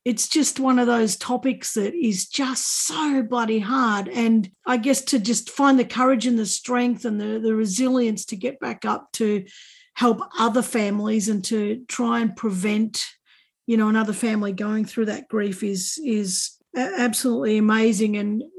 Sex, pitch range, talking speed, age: female, 215-255 Hz, 170 wpm, 50-69